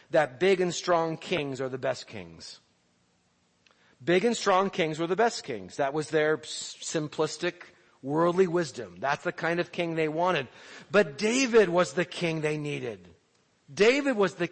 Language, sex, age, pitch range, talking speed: English, male, 40-59, 150-200 Hz, 165 wpm